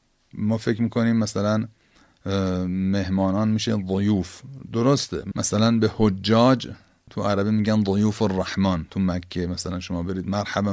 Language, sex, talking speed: Persian, male, 125 wpm